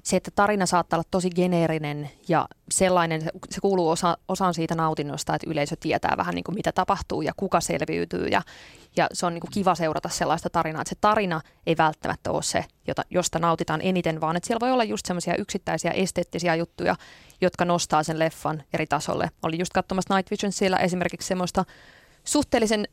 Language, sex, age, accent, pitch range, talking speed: Finnish, female, 20-39, native, 160-190 Hz, 180 wpm